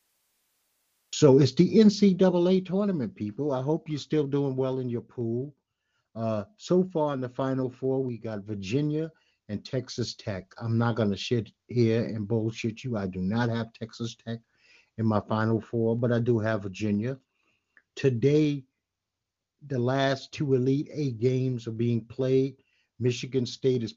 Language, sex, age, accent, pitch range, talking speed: English, male, 60-79, American, 110-135 Hz, 165 wpm